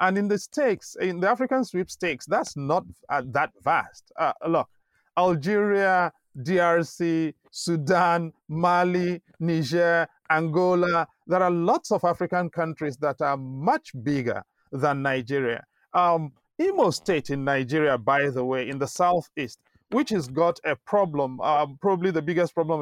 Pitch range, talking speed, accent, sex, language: 155-200 Hz, 140 wpm, Nigerian, male, English